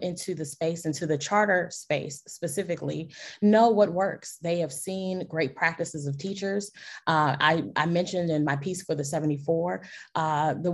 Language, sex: English, female